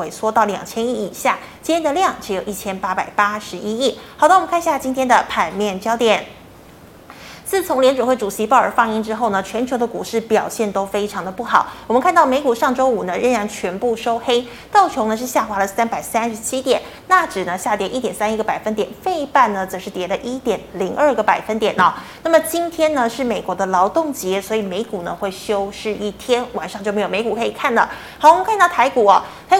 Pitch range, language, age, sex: 210-280 Hz, Chinese, 20-39, female